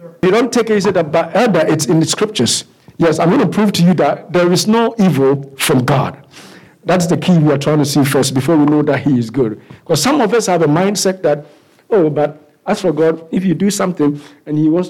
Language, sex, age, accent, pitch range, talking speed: English, male, 50-69, South African, 155-215 Hz, 240 wpm